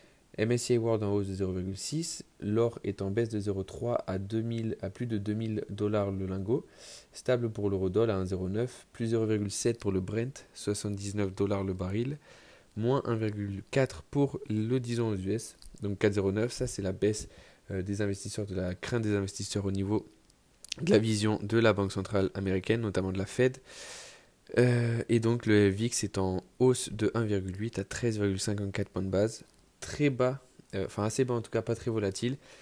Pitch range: 100-115 Hz